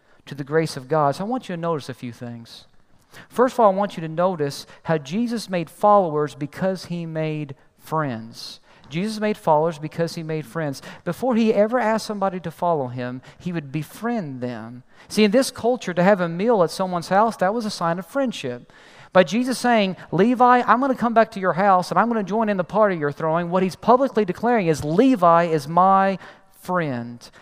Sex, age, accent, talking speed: male, 40-59, American, 215 wpm